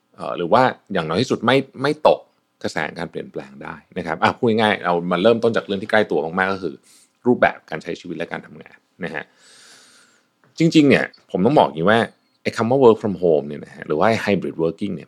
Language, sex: Thai, male